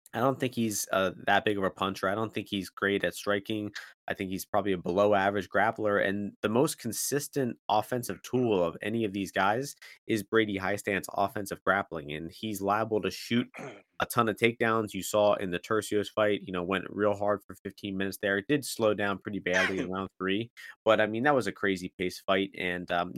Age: 20-39